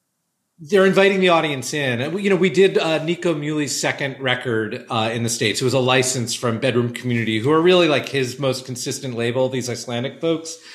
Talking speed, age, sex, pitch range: 205 wpm, 40-59, male, 120-160 Hz